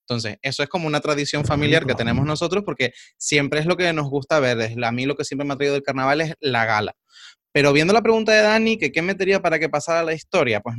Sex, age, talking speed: male, 20-39, 250 wpm